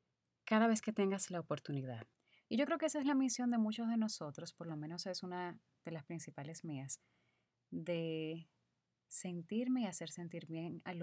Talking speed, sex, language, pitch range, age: 185 wpm, female, Spanish, 150-190 Hz, 30-49